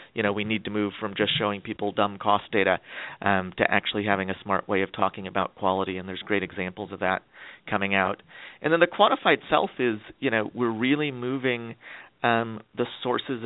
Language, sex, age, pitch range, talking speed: English, male, 40-59, 100-115 Hz, 205 wpm